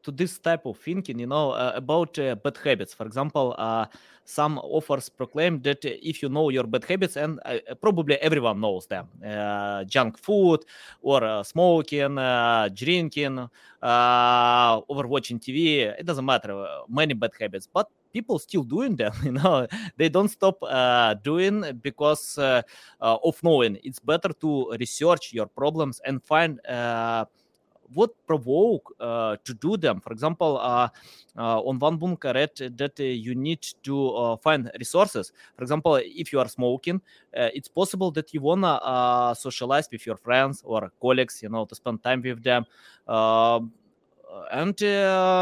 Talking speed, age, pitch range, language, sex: 160 wpm, 20-39, 125-165 Hz, English, male